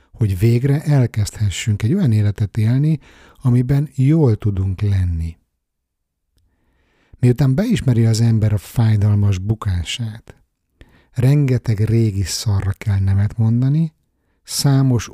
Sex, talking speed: male, 100 wpm